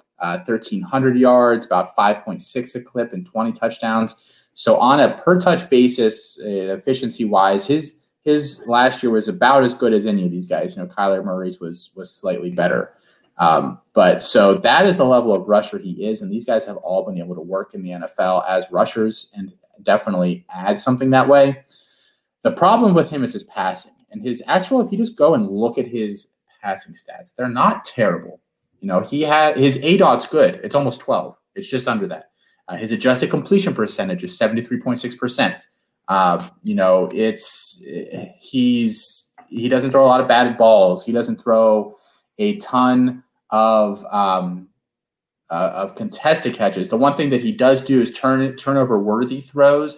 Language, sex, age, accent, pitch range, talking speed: English, male, 30-49, American, 105-145 Hz, 180 wpm